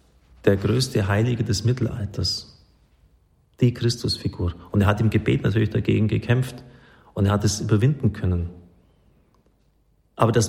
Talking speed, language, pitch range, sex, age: 130 wpm, German, 100-125 Hz, male, 40-59